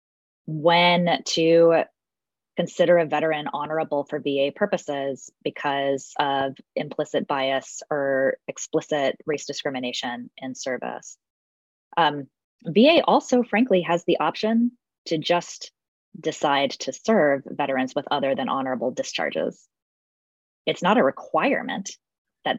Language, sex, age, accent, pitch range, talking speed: English, female, 20-39, American, 140-175 Hz, 110 wpm